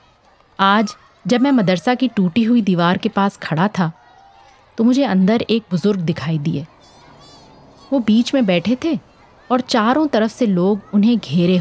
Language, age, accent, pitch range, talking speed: Hindi, 30-49, native, 170-245 Hz, 160 wpm